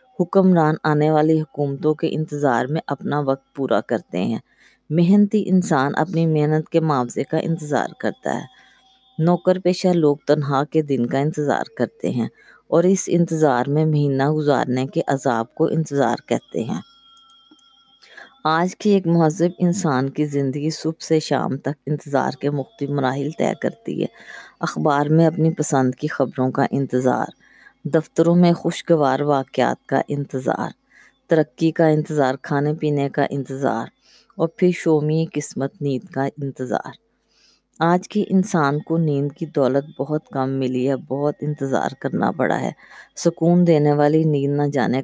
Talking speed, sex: 150 wpm, female